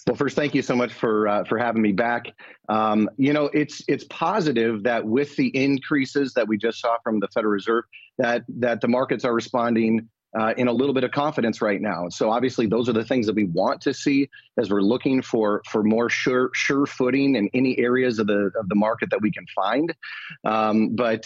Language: English